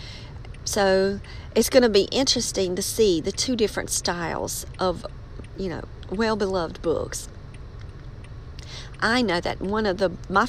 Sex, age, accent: female, 40-59, American